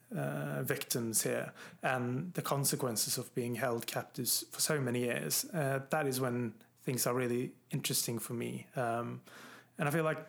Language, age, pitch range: English, 30-49, 120-145 Hz